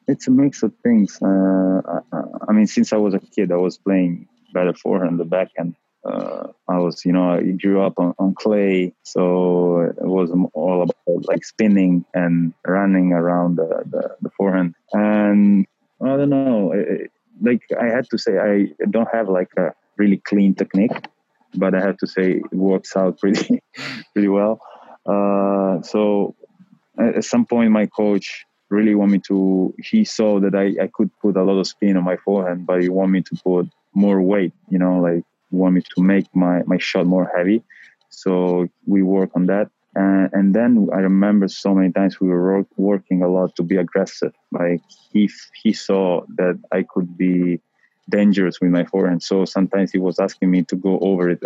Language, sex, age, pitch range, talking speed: English, male, 20-39, 90-100 Hz, 190 wpm